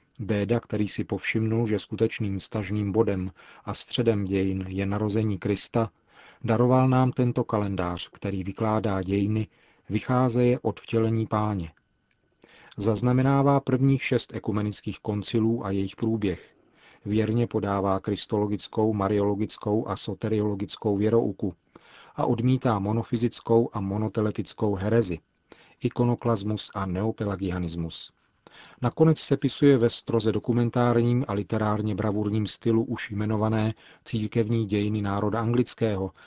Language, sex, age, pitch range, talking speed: Czech, male, 40-59, 100-115 Hz, 110 wpm